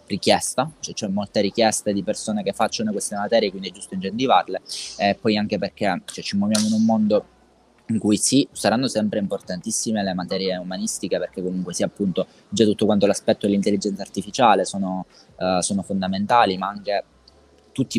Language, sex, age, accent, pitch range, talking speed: Italian, male, 20-39, native, 95-110 Hz, 175 wpm